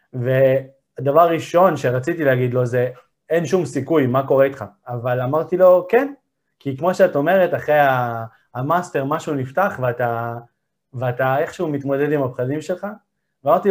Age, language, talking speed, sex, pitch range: 30-49, Hebrew, 140 wpm, male, 130-155 Hz